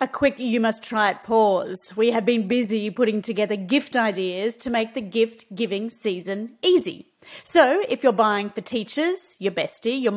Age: 30-49